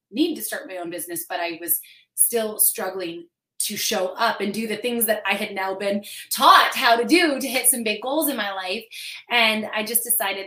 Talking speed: 225 wpm